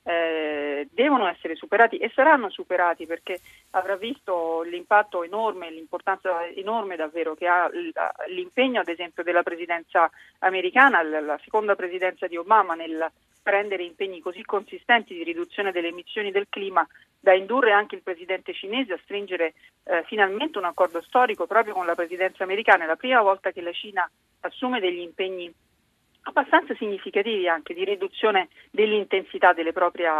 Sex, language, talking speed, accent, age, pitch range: female, Italian, 150 wpm, native, 40-59, 175-215 Hz